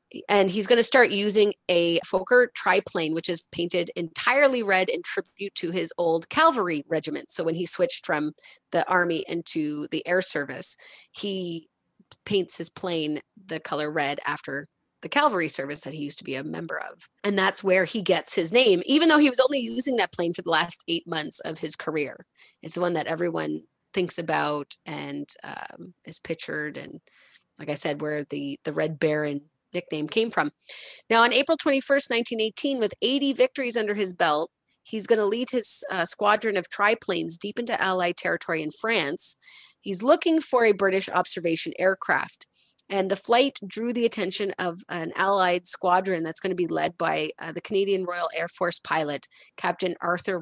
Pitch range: 170-225 Hz